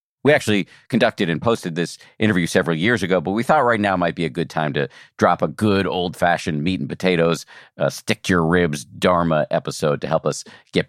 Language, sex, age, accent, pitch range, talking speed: English, male, 50-69, American, 75-100 Hz, 210 wpm